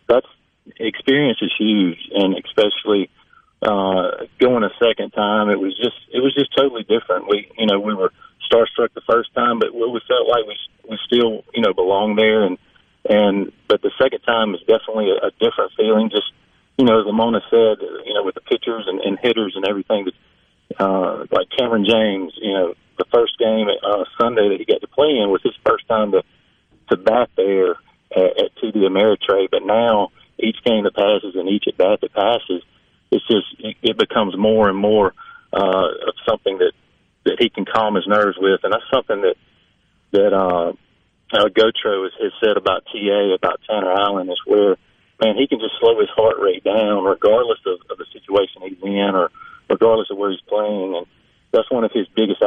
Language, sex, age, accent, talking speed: English, male, 40-59, American, 200 wpm